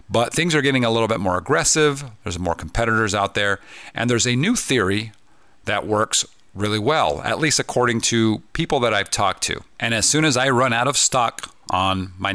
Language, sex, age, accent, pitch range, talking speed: English, male, 40-59, American, 95-120 Hz, 210 wpm